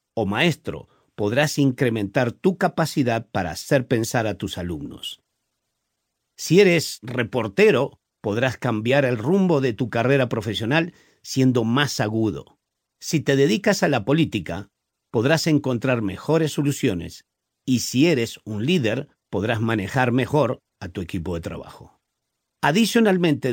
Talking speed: 130 wpm